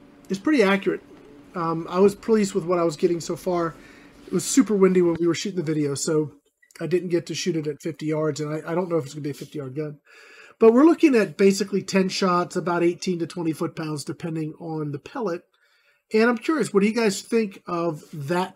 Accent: American